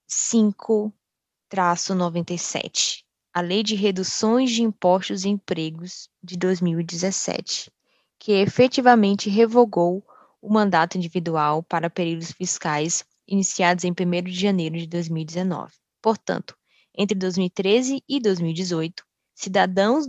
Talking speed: 95 wpm